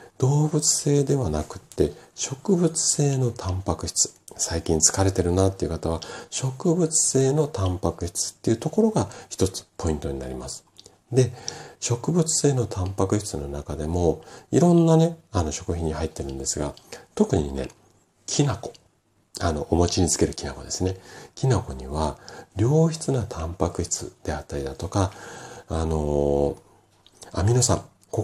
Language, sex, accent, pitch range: Japanese, male, native, 80-115 Hz